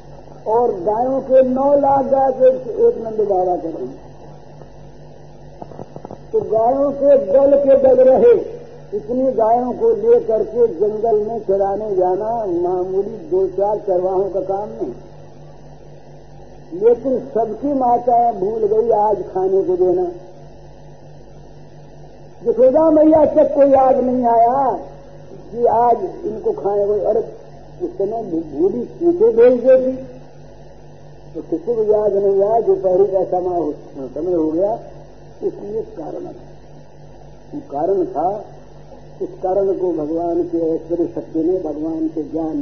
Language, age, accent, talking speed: Hindi, 50-69, native, 130 wpm